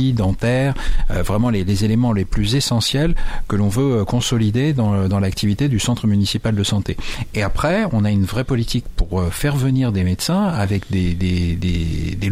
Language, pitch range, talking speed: French, 95-120 Hz, 180 wpm